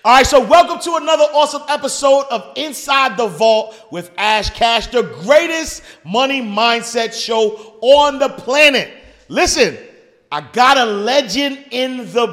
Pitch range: 220-275 Hz